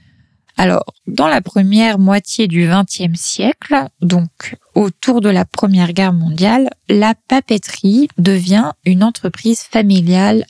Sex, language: female, French